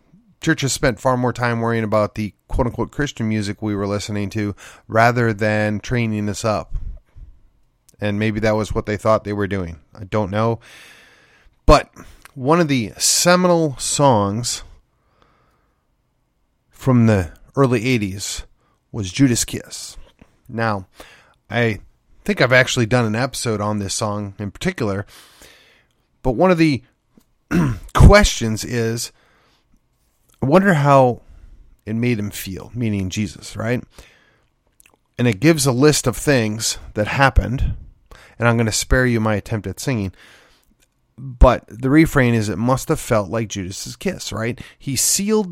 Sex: male